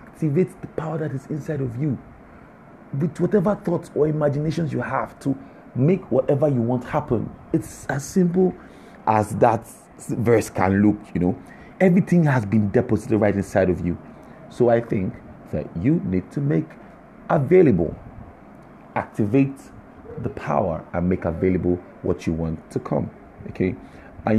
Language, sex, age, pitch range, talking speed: English, male, 40-59, 85-120 Hz, 150 wpm